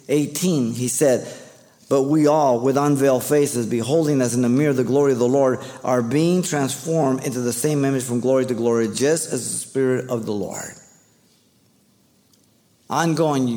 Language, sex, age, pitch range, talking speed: English, male, 50-69, 120-145 Hz, 170 wpm